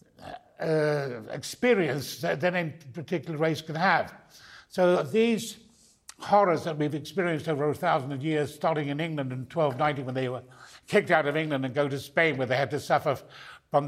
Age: 60-79